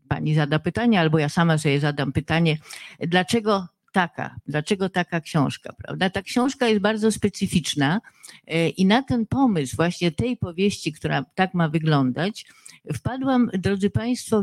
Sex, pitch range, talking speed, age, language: female, 150-190 Hz, 135 wpm, 50-69, Polish